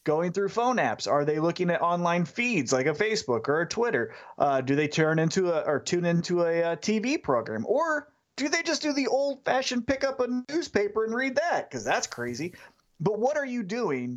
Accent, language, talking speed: American, English, 210 wpm